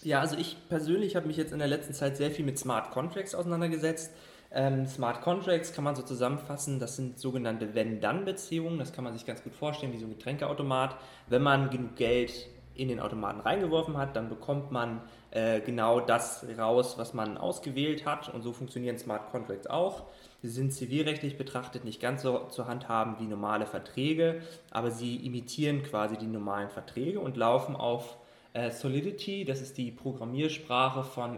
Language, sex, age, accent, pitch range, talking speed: German, male, 20-39, German, 120-150 Hz, 180 wpm